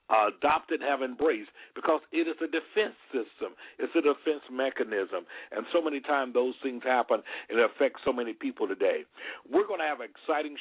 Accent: American